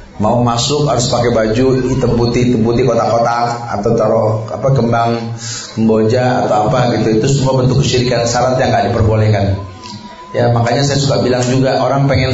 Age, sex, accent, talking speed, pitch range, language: 30-49, male, native, 145 wpm, 110-130 Hz, Indonesian